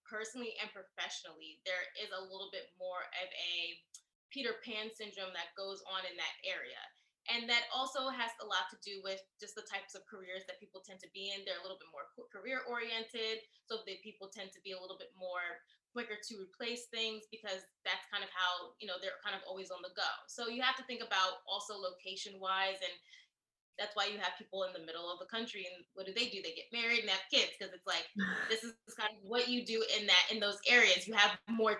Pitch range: 185-220 Hz